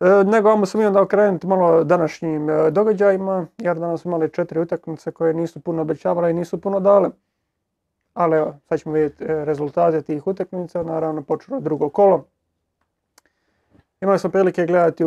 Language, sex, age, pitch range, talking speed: Croatian, male, 30-49, 155-175 Hz, 160 wpm